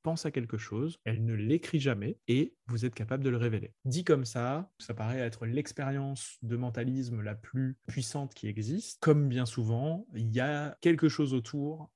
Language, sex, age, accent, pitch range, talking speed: French, male, 20-39, French, 115-135 Hz, 190 wpm